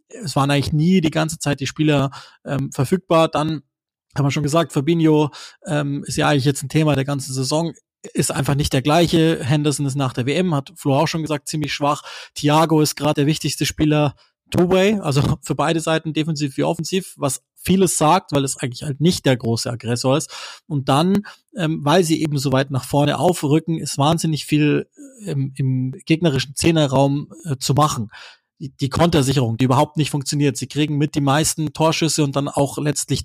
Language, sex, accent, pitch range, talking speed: German, male, German, 140-160 Hz, 190 wpm